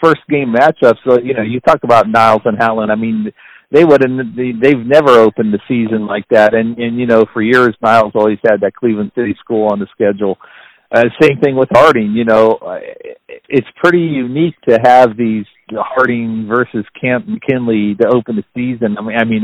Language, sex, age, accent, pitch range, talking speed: English, male, 50-69, American, 110-130 Hz, 205 wpm